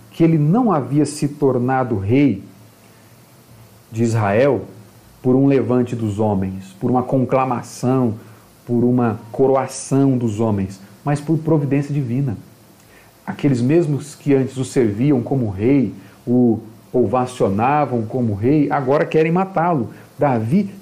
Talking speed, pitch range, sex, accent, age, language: 120 wpm, 125-185 Hz, male, Brazilian, 40-59, Portuguese